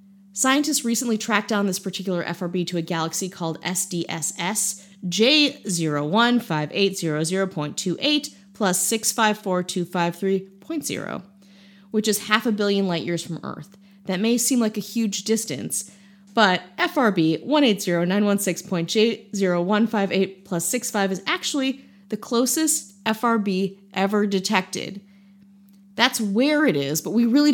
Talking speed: 110 wpm